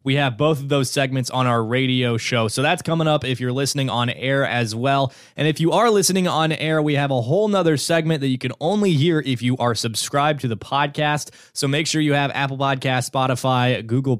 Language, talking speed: English, 235 wpm